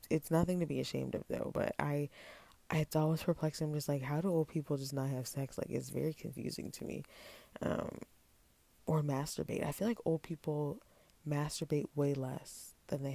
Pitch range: 135-160 Hz